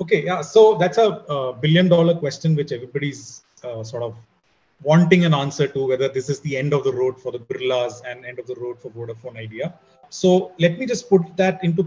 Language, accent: English, Indian